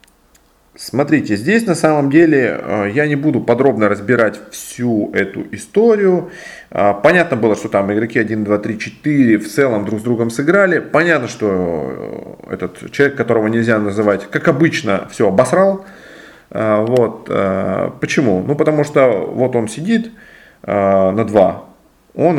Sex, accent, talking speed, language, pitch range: male, native, 135 wpm, Russian, 105-160 Hz